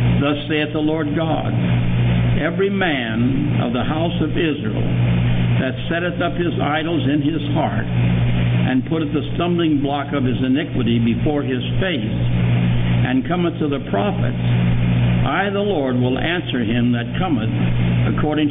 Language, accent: English, American